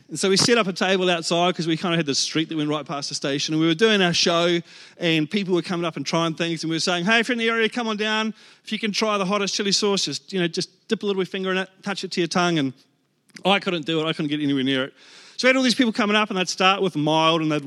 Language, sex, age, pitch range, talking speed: English, male, 30-49, 160-215 Hz, 340 wpm